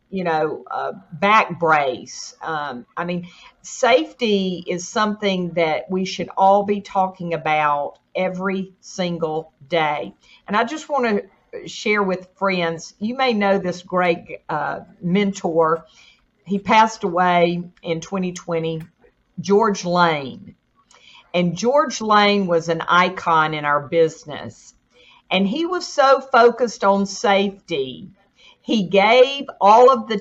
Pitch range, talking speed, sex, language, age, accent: 175-240 Hz, 125 wpm, female, English, 50-69, American